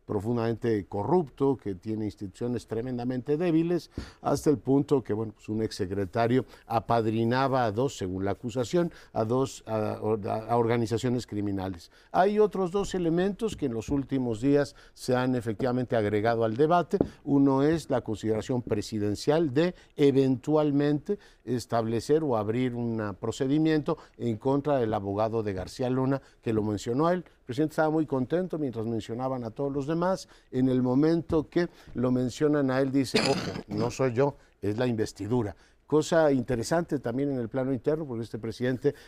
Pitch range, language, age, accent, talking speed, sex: 115-150 Hz, Spanish, 50-69, Mexican, 155 wpm, male